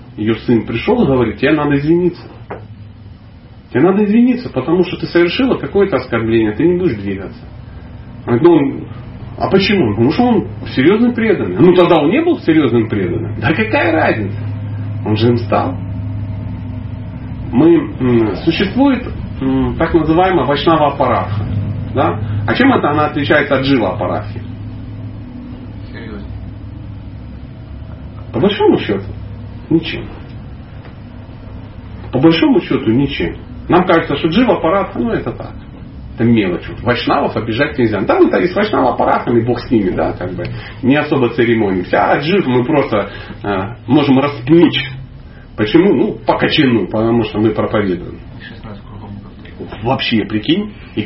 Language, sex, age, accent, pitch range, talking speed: Russian, male, 40-59, native, 105-155 Hz, 125 wpm